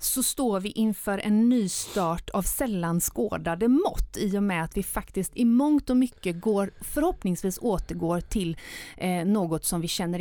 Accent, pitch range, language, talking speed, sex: native, 175-245 Hz, Swedish, 165 wpm, female